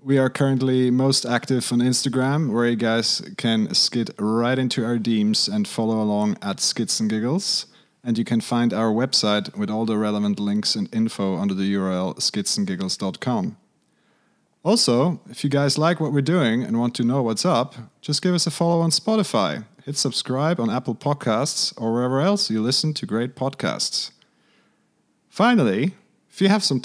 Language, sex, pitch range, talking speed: English, male, 115-165 Hz, 170 wpm